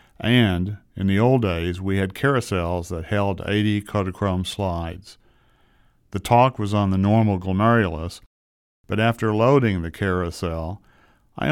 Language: English